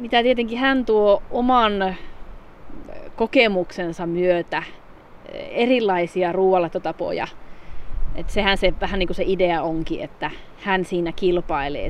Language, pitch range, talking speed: Finnish, 165-205 Hz, 110 wpm